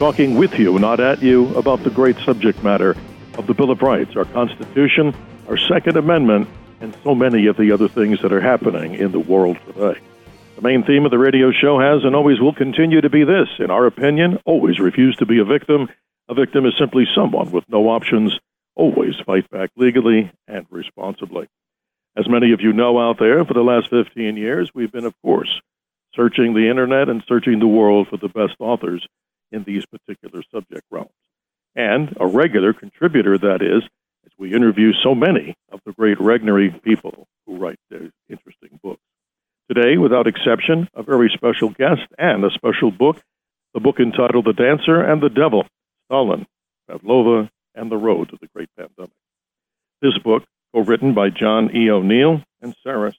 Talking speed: 185 wpm